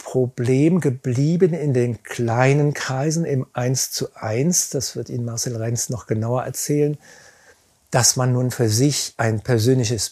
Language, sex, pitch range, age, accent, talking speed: German, male, 115-150 Hz, 50-69, German, 140 wpm